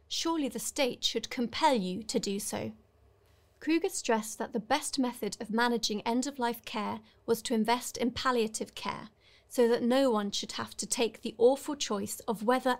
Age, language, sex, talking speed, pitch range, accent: 30-49, English, female, 180 wpm, 210-260 Hz, British